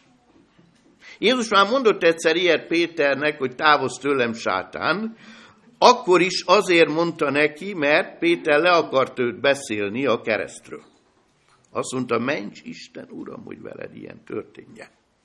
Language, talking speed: Hungarian, 125 wpm